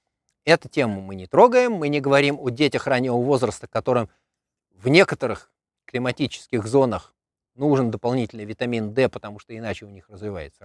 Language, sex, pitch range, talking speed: Russian, male, 105-150 Hz, 150 wpm